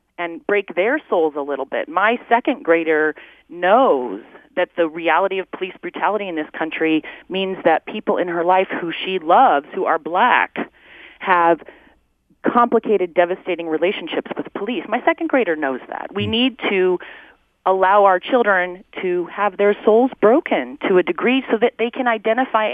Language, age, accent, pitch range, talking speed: English, 30-49, American, 170-230 Hz, 165 wpm